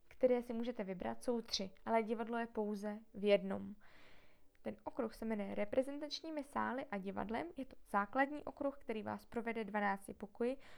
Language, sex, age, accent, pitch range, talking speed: Czech, female, 20-39, native, 205-260 Hz, 160 wpm